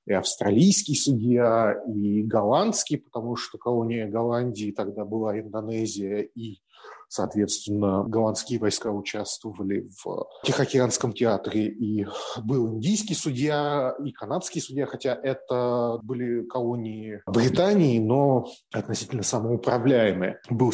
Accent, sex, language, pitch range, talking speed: native, male, Russian, 110-135 Hz, 100 wpm